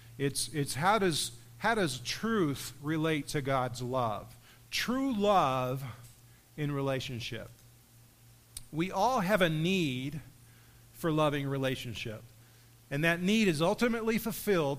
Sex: male